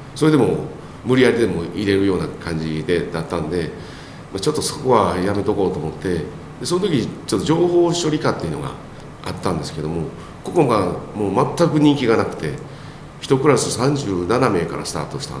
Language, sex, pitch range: Japanese, male, 85-145 Hz